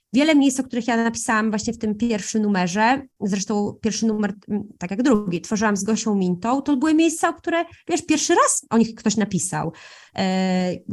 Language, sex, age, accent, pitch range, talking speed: Polish, female, 20-39, native, 210-270 Hz, 180 wpm